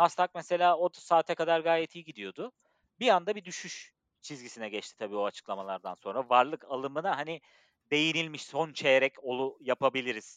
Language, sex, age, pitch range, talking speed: Turkish, male, 40-59, 125-200 Hz, 150 wpm